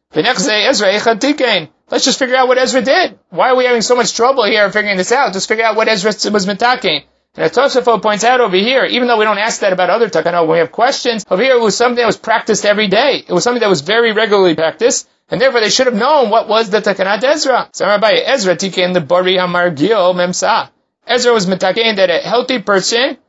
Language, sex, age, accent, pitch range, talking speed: English, male, 30-49, American, 190-245 Hz, 230 wpm